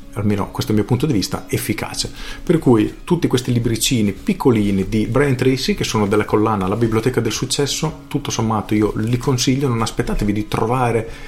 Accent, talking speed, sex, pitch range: native, 185 wpm, male, 105-125 Hz